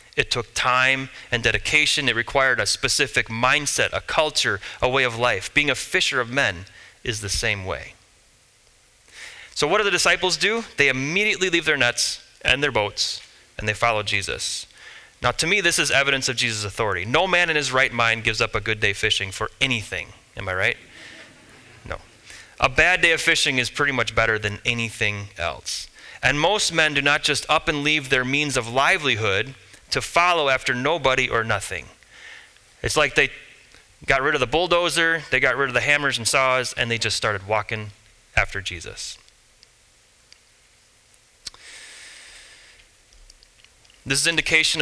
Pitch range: 110-140 Hz